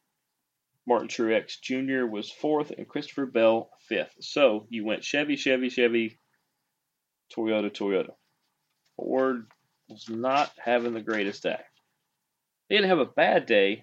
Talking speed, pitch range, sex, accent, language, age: 130 wpm, 110-135 Hz, male, American, English, 30-49